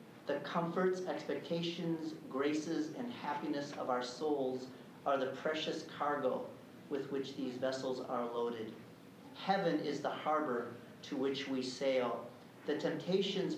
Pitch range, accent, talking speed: 135-170 Hz, American, 130 wpm